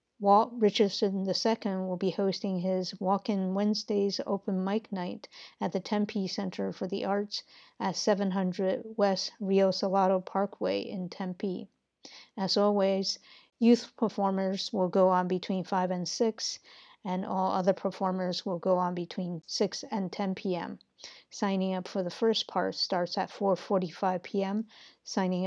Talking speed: 145 wpm